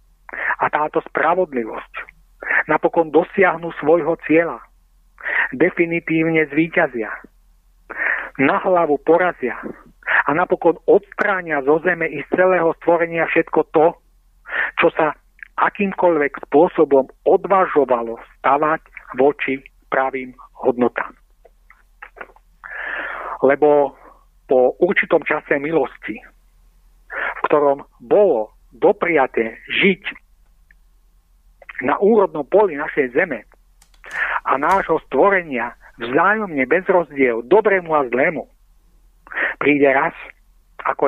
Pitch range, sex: 135-175 Hz, male